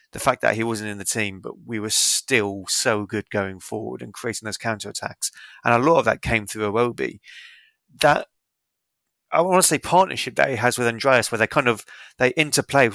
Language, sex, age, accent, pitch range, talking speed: English, male, 30-49, British, 110-135 Hz, 210 wpm